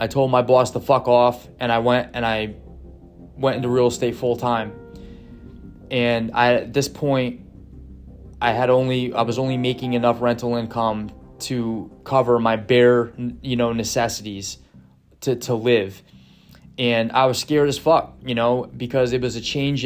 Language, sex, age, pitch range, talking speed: English, male, 20-39, 120-140 Hz, 170 wpm